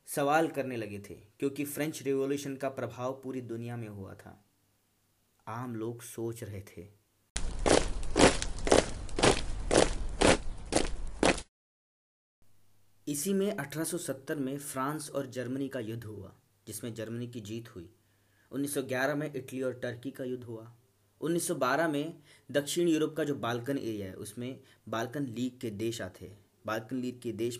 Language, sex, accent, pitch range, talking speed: Hindi, male, native, 110-140 Hz, 135 wpm